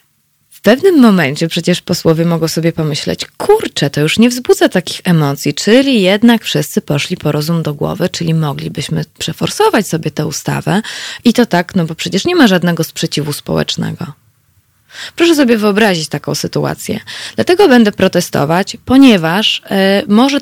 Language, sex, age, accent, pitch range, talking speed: Polish, female, 20-39, native, 165-230 Hz, 145 wpm